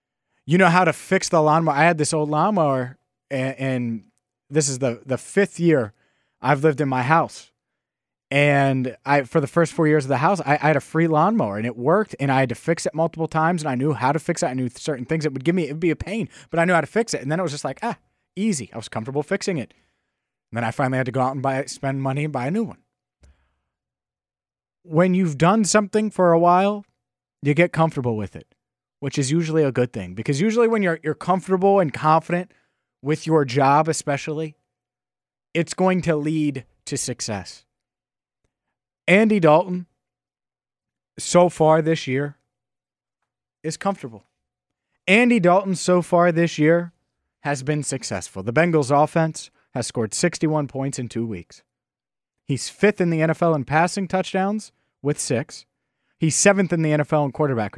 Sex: male